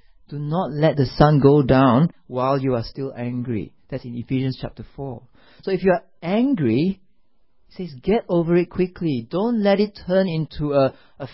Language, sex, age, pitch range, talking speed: English, male, 40-59, 135-185 Hz, 185 wpm